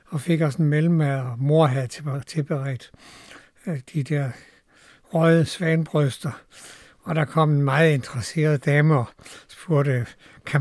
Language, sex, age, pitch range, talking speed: Danish, male, 60-79, 130-160 Hz, 130 wpm